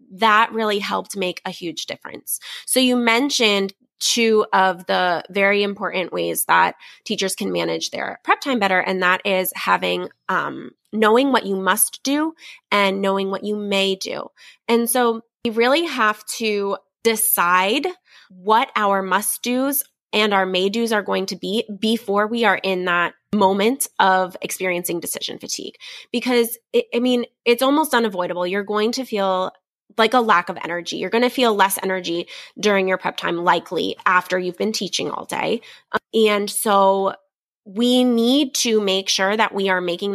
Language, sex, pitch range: English, female, 190-230 Hz